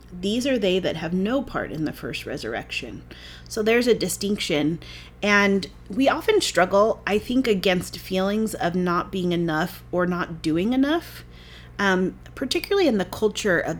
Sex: female